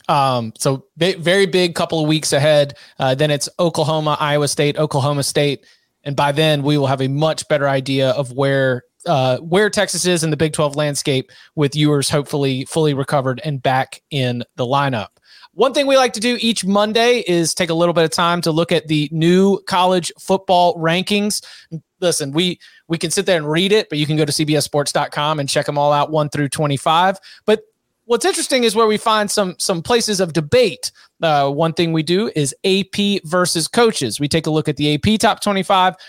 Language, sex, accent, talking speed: English, male, American, 205 wpm